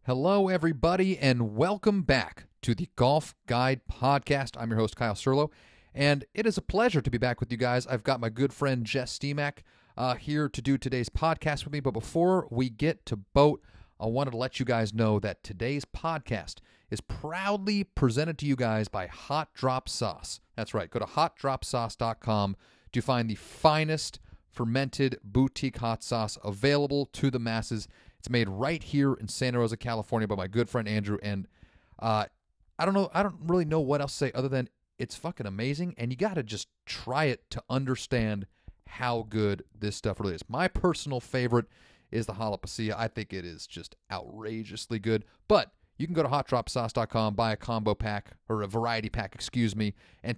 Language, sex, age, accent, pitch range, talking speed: English, male, 40-59, American, 110-140 Hz, 190 wpm